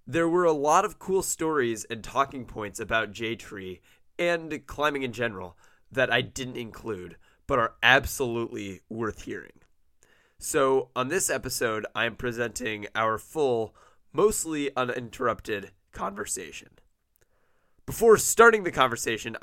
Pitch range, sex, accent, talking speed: 115-150 Hz, male, American, 125 wpm